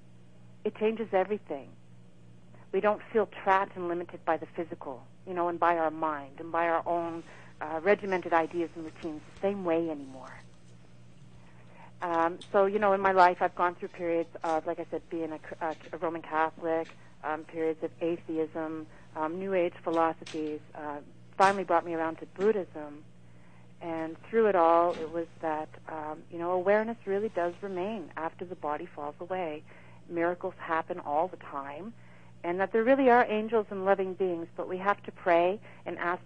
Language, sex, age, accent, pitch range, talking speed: English, female, 40-59, American, 150-185 Hz, 175 wpm